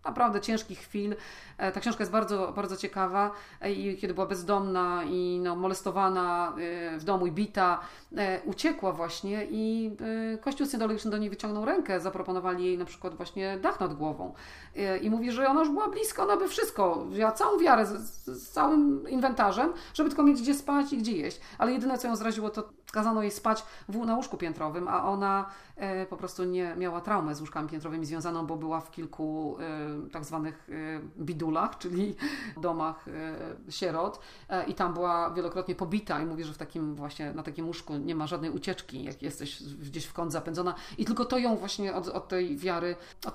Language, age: Polish, 40-59